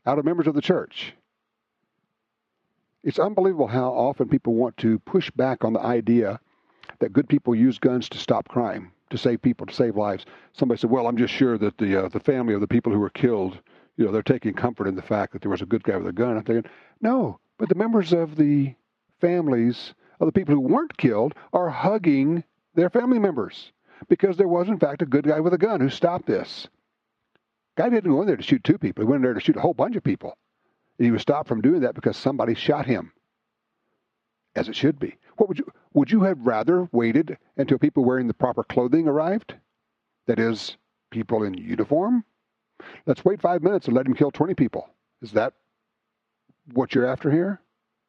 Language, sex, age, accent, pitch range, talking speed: English, male, 60-79, American, 115-175 Hz, 215 wpm